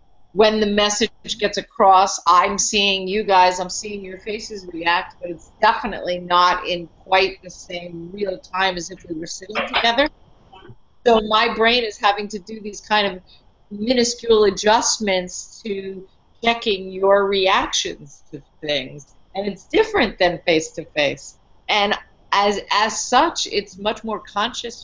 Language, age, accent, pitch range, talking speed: English, 50-69, American, 180-215 Hz, 145 wpm